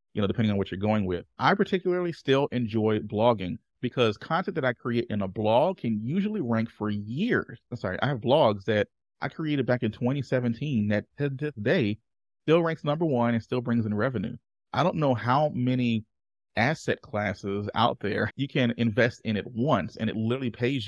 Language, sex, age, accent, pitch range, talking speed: English, male, 30-49, American, 110-140 Hz, 200 wpm